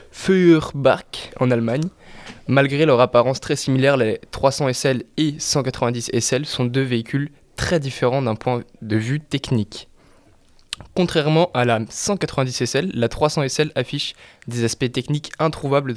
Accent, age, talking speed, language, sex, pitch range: French, 20-39, 140 wpm, French, male, 120-145 Hz